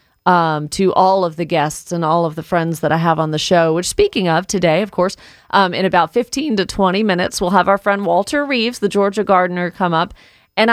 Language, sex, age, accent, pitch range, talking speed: English, female, 40-59, American, 165-205 Hz, 235 wpm